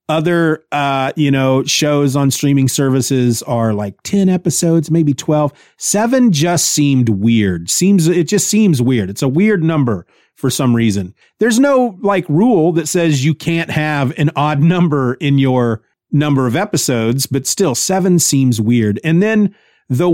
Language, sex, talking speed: English, male, 165 wpm